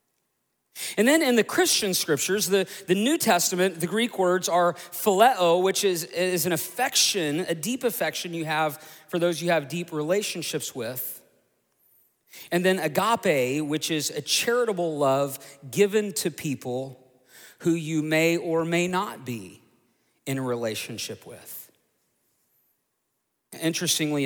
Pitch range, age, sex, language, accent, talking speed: 140-185 Hz, 40-59, male, English, American, 135 wpm